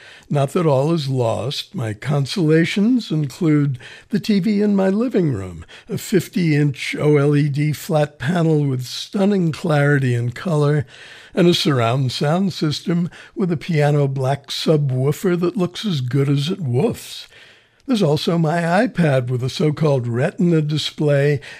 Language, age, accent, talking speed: English, 60-79, American, 140 wpm